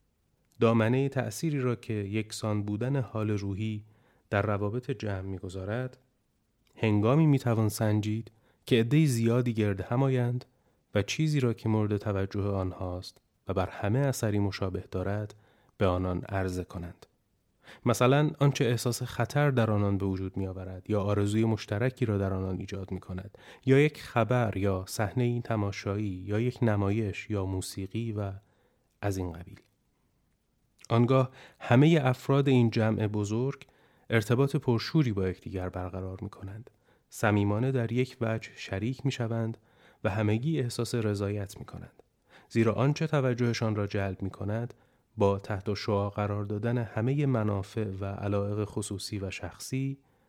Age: 30-49